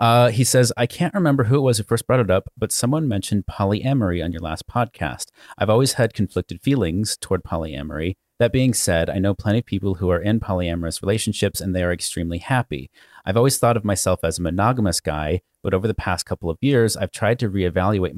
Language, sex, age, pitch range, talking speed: English, male, 30-49, 85-115 Hz, 220 wpm